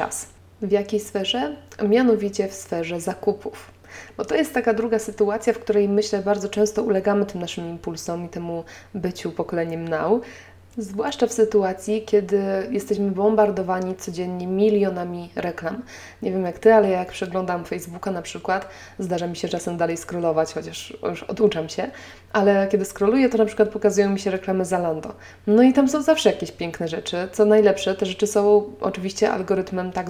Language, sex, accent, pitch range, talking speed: Polish, female, native, 170-210 Hz, 165 wpm